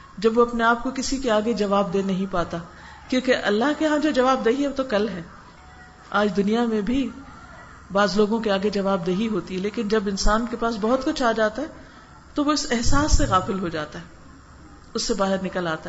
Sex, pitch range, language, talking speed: female, 190-255 Hz, Urdu, 225 wpm